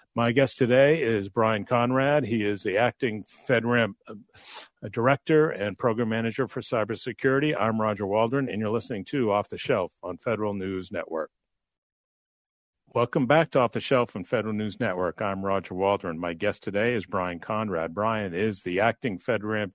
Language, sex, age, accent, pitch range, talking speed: English, male, 50-69, American, 95-120 Hz, 165 wpm